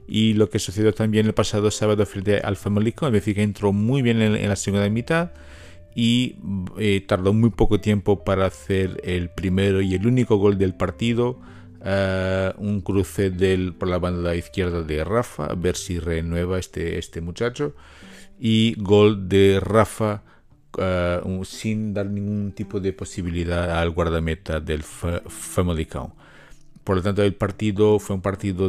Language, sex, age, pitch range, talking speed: Spanish, male, 50-69, 90-110 Hz, 165 wpm